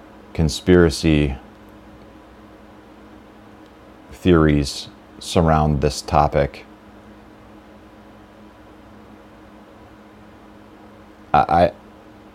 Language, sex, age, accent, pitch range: English, male, 40-59, American, 80-105 Hz